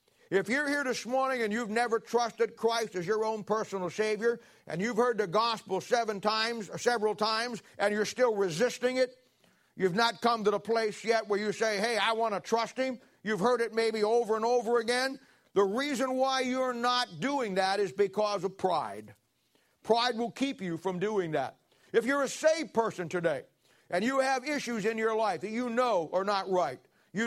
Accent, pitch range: American, 195-235 Hz